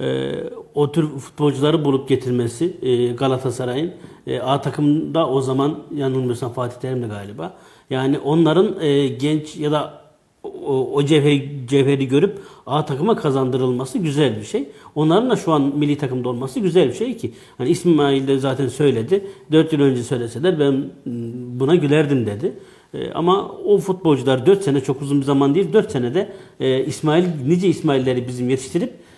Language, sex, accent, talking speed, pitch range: Turkish, male, native, 145 wpm, 130-160 Hz